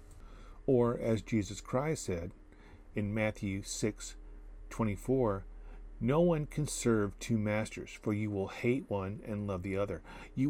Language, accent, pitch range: English, American, 100-135 Hz